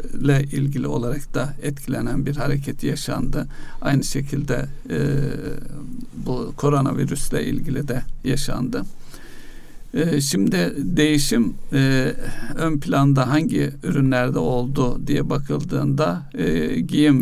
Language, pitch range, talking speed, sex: Turkish, 130-145 Hz, 100 wpm, male